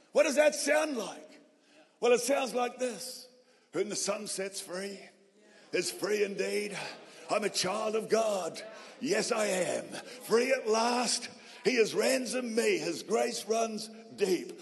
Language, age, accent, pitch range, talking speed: English, 50-69, British, 225-295 Hz, 150 wpm